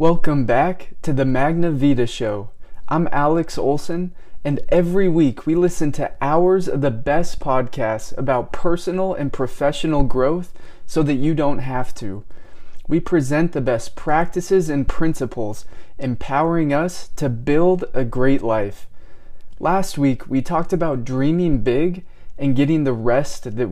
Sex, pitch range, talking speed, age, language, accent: male, 125-155 Hz, 145 wpm, 20-39, English, American